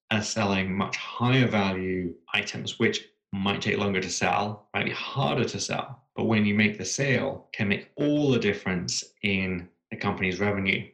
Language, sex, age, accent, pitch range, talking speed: English, male, 20-39, British, 95-120 Hz, 175 wpm